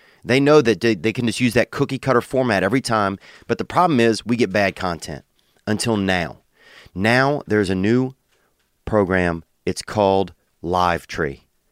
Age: 30-49